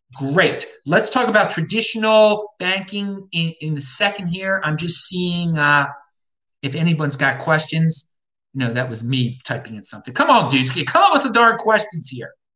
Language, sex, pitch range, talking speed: English, male, 140-195 Hz, 170 wpm